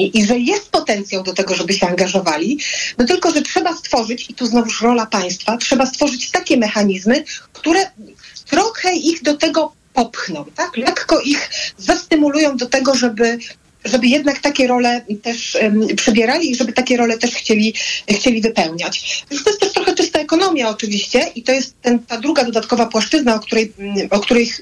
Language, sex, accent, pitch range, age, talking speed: Polish, female, native, 215-290 Hz, 40-59, 165 wpm